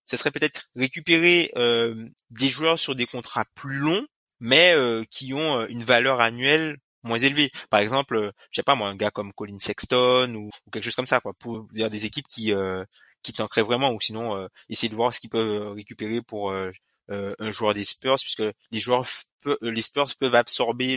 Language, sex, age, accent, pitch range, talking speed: French, male, 20-39, French, 110-145 Hz, 220 wpm